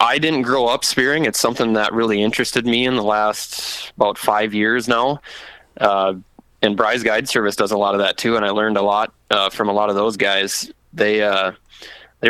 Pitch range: 105-115 Hz